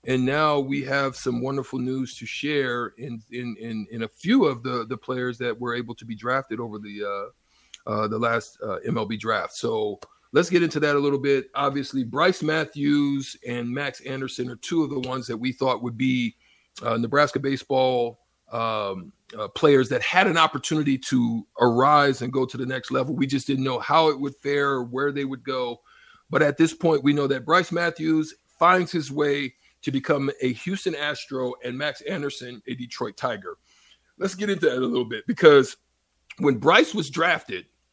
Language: English